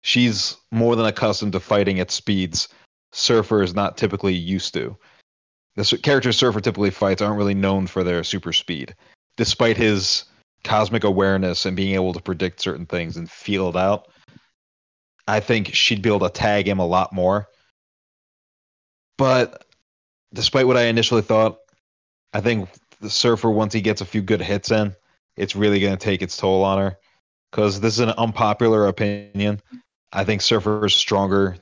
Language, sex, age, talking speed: English, male, 30-49, 170 wpm